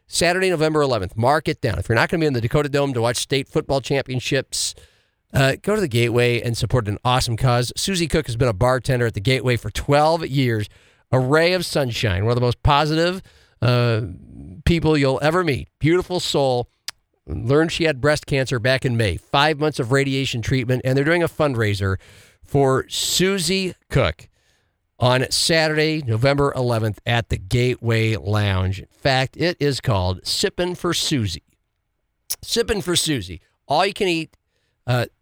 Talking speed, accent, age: 175 wpm, American, 50-69